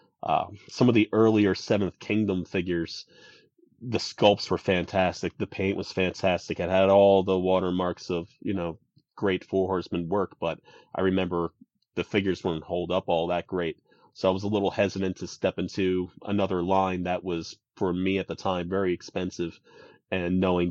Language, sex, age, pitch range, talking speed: English, male, 30-49, 85-100 Hz, 175 wpm